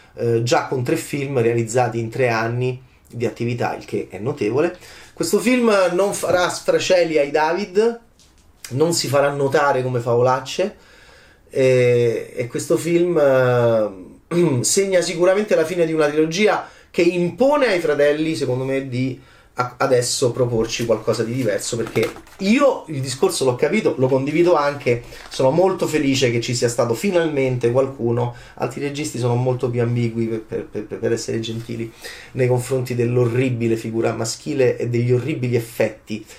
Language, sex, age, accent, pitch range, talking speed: Italian, male, 30-49, native, 115-170 Hz, 145 wpm